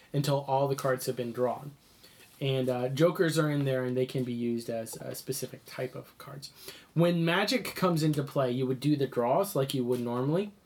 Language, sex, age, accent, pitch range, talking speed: English, male, 20-39, American, 130-160 Hz, 215 wpm